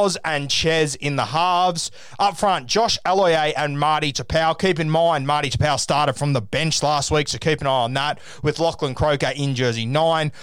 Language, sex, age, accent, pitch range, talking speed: English, male, 20-39, Australian, 140-170 Hz, 200 wpm